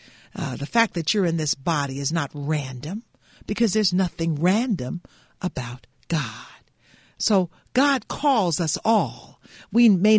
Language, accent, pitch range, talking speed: English, American, 165-240 Hz, 140 wpm